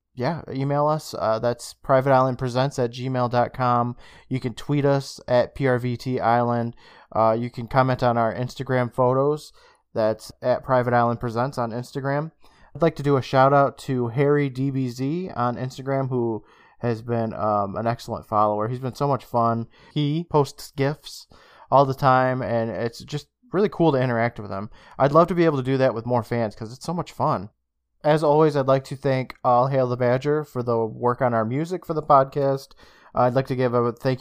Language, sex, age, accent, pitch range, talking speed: English, male, 20-39, American, 120-140 Hz, 195 wpm